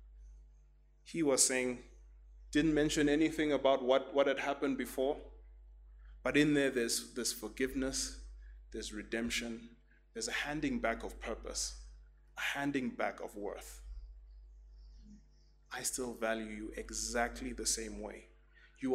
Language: English